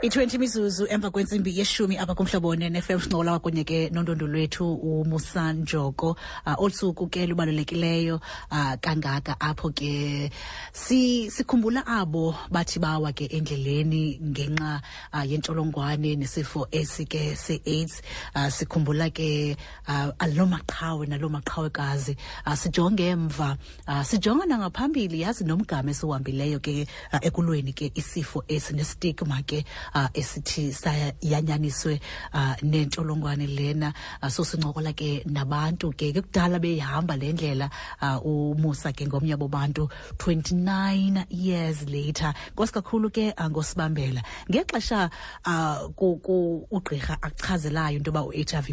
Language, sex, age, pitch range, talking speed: English, female, 30-49, 145-175 Hz, 120 wpm